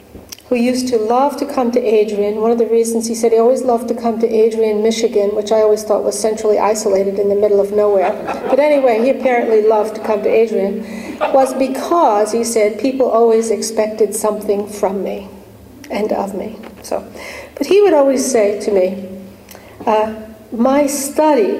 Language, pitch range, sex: English, 210-255 Hz, female